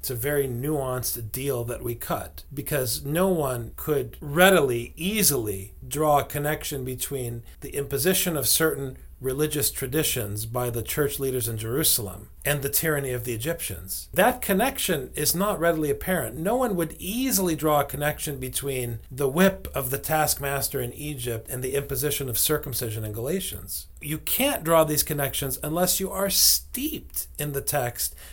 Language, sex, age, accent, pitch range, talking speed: English, male, 40-59, American, 125-170 Hz, 160 wpm